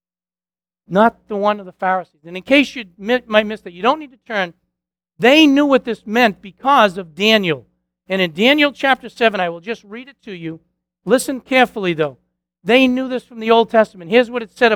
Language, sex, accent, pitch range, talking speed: English, male, American, 175-245 Hz, 210 wpm